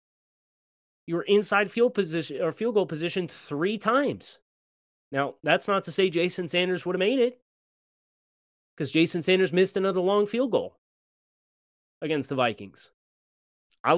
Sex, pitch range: male, 125-175 Hz